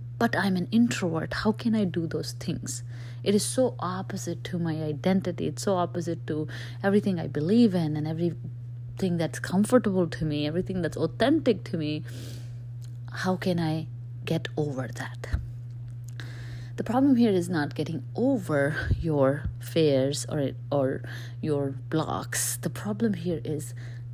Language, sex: English, female